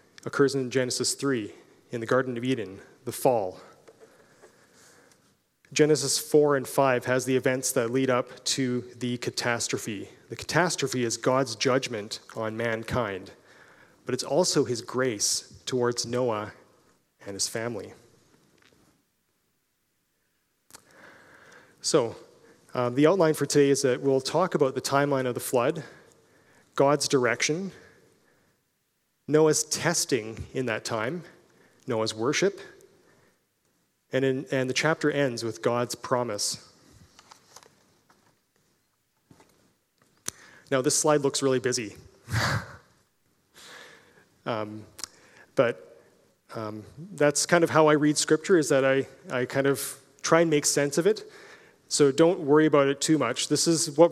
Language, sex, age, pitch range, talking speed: English, male, 30-49, 120-150 Hz, 125 wpm